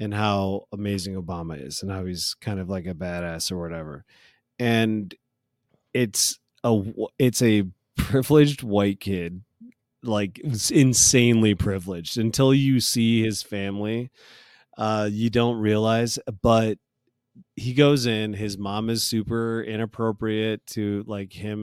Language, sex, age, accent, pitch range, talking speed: English, male, 30-49, American, 105-125 Hz, 135 wpm